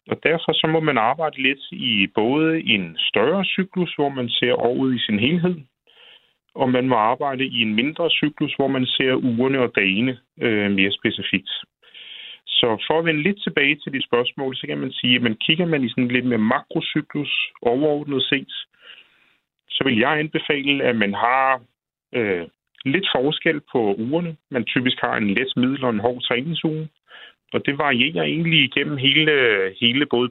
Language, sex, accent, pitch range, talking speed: Danish, male, native, 120-160 Hz, 180 wpm